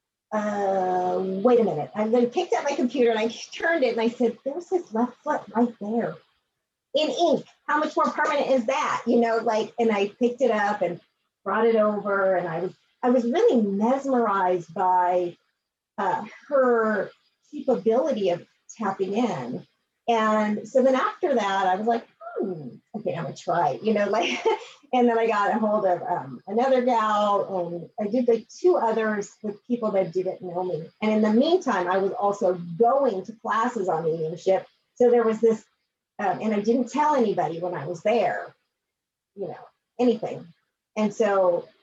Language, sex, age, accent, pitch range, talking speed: English, female, 40-59, American, 195-245 Hz, 185 wpm